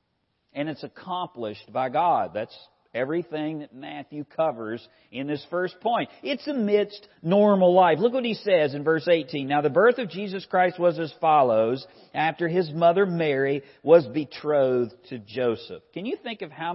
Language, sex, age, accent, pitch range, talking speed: English, male, 50-69, American, 145-205 Hz, 170 wpm